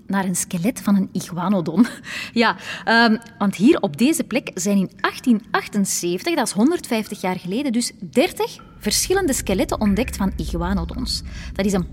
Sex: female